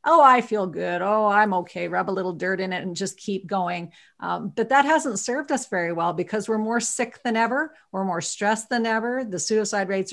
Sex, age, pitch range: female, 40-59, 180-220 Hz